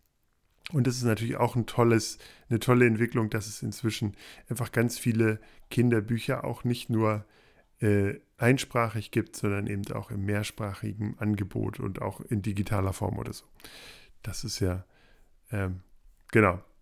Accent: German